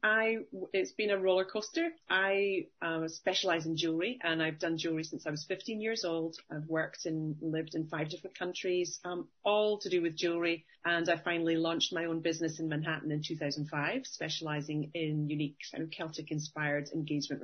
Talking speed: 185 wpm